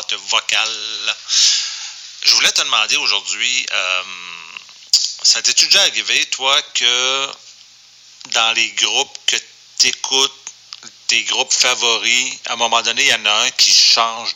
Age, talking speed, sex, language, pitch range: 40-59, 135 wpm, male, French, 105-125 Hz